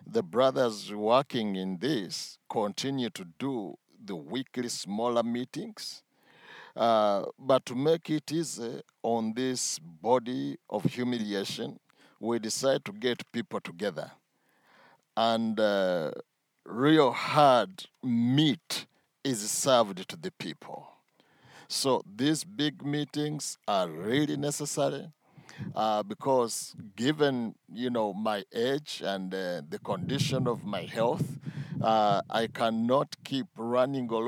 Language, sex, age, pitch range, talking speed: English, male, 50-69, 115-150 Hz, 115 wpm